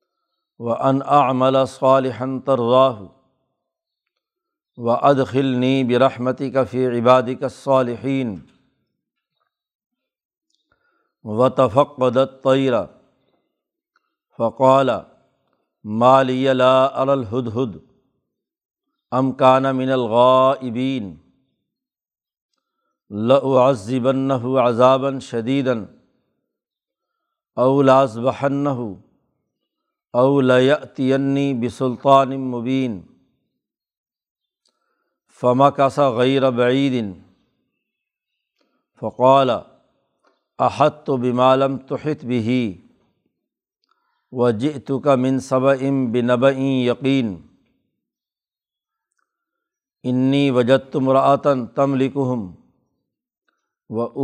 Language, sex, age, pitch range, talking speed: Urdu, male, 60-79, 125-140 Hz, 60 wpm